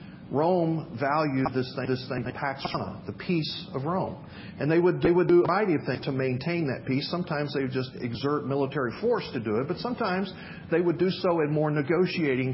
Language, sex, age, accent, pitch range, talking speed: English, male, 40-59, American, 130-170 Hz, 205 wpm